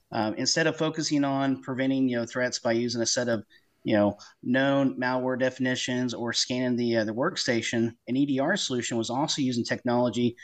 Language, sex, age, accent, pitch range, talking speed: English, male, 30-49, American, 120-135 Hz, 185 wpm